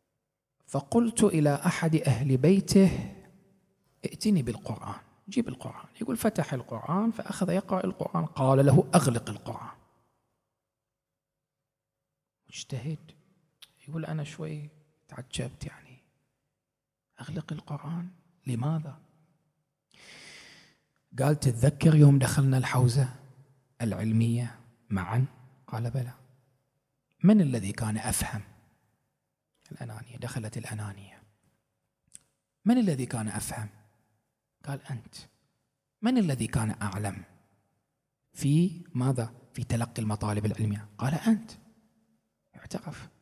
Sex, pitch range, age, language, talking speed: male, 115-155 Hz, 40-59, Arabic, 85 wpm